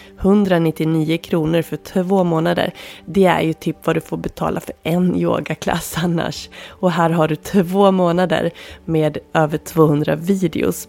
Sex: female